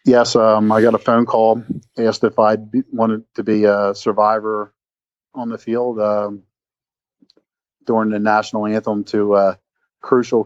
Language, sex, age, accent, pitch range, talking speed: English, male, 40-59, American, 105-115 Hz, 155 wpm